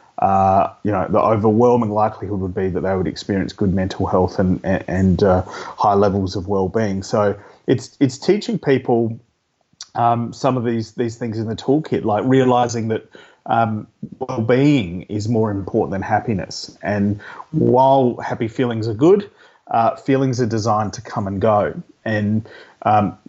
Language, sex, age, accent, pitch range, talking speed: English, male, 30-49, Australian, 100-125 Hz, 160 wpm